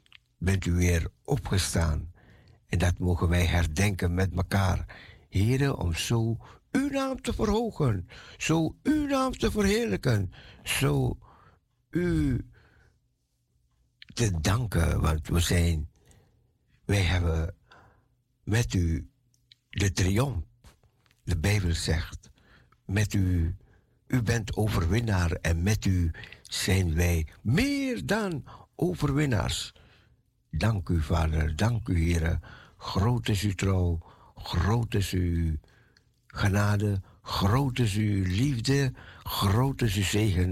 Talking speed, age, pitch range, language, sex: 110 wpm, 60-79, 90-120 Hz, Dutch, male